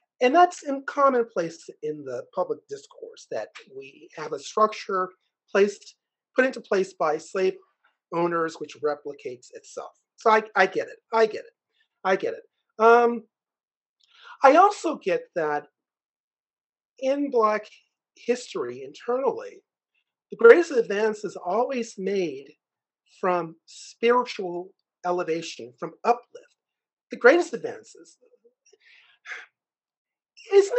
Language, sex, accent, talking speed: English, male, American, 115 wpm